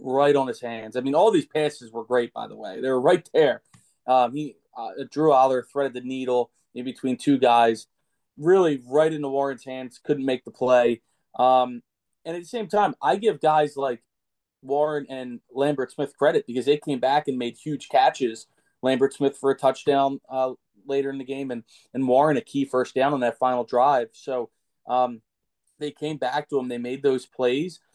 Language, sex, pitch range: English, male, 120-145 Hz